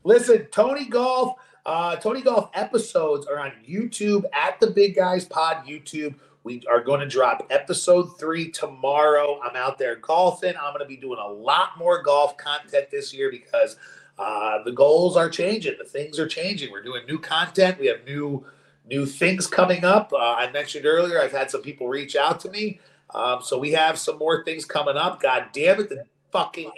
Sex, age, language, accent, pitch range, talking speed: male, 30-49, English, American, 145-205 Hz, 195 wpm